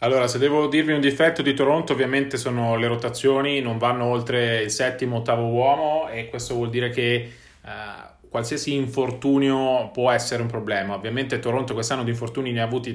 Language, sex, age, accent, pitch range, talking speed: Italian, male, 30-49, native, 120-140 Hz, 180 wpm